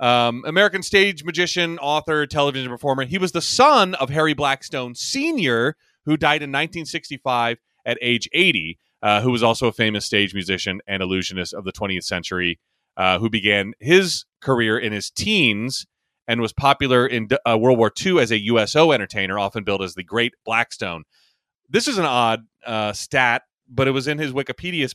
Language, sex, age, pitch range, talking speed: English, male, 30-49, 105-155 Hz, 180 wpm